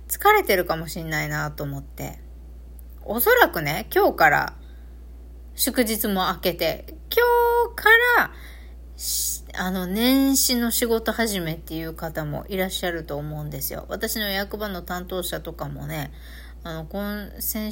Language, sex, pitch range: Japanese, female, 150-215 Hz